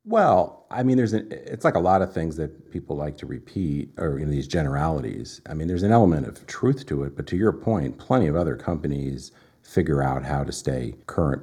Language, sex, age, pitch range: English, male, 50-69, 70-85 Hz